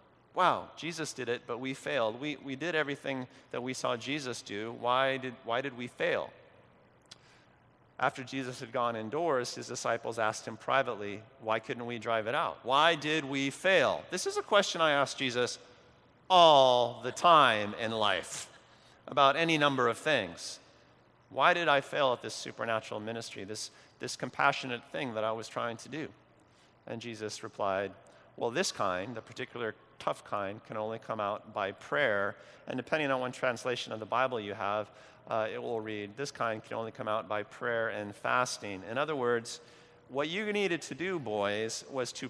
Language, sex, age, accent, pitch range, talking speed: English, male, 40-59, American, 110-145 Hz, 180 wpm